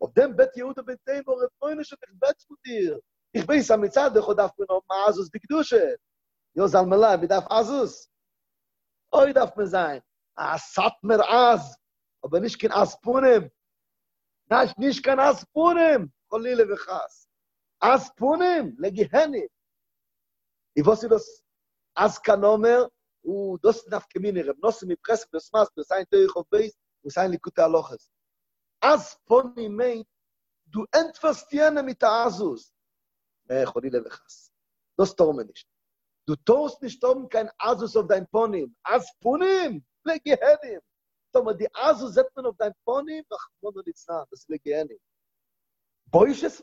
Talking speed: 95 wpm